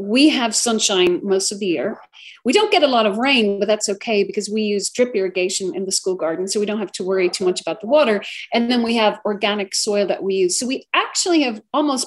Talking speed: 255 wpm